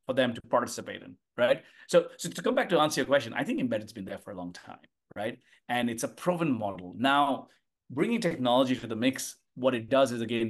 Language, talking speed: English, 235 wpm